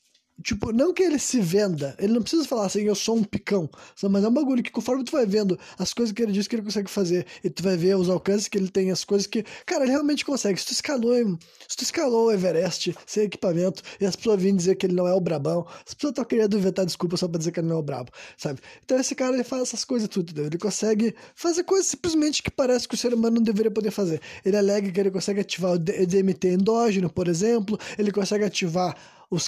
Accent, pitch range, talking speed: Brazilian, 190-240 Hz, 255 wpm